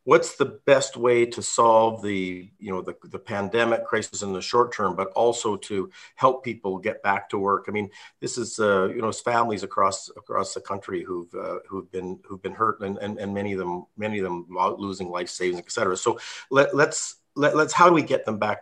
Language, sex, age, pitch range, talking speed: English, male, 50-69, 95-120 Hz, 225 wpm